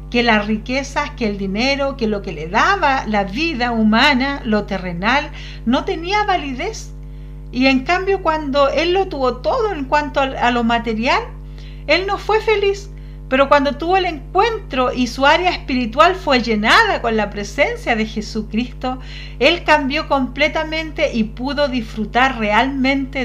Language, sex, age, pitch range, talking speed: Spanish, female, 50-69, 220-315 Hz, 150 wpm